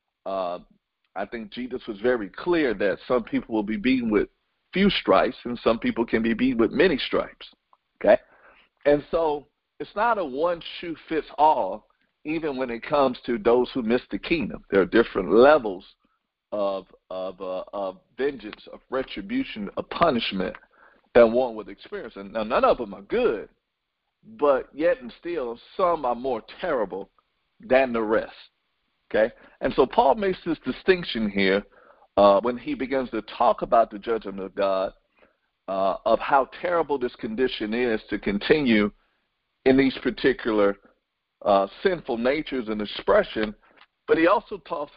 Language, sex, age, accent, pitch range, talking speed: English, male, 50-69, American, 110-155 Hz, 160 wpm